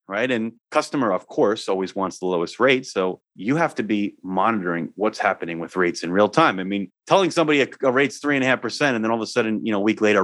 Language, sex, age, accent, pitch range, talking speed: English, male, 30-49, American, 100-125 Hz, 265 wpm